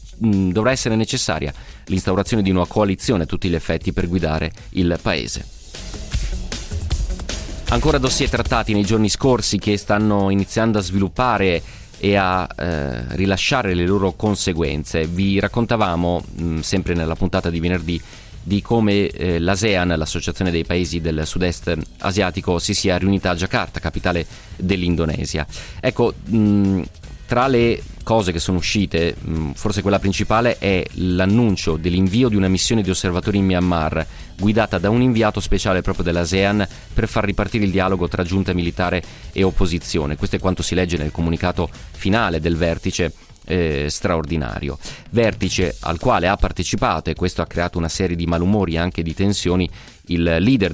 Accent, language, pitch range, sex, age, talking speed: native, Italian, 85-105 Hz, male, 30-49, 150 wpm